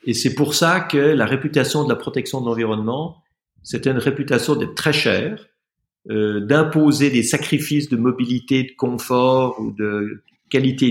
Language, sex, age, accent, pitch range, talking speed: French, male, 50-69, French, 115-150 Hz, 160 wpm